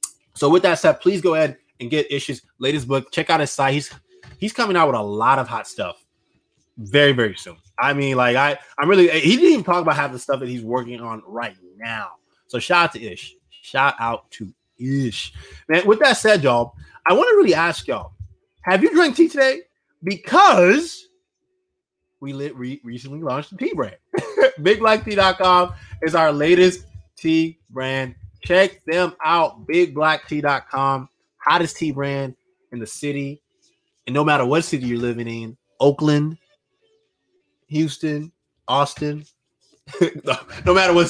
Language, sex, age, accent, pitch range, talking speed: English, male, 20-39, American, 135-195 Hz, 160 wpm